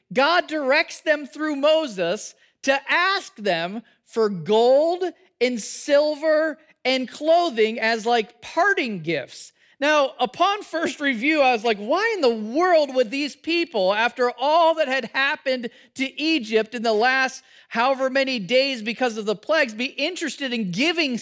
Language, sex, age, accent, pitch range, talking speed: English, male, 40-59, American, 230-300 Hz, 150 wpm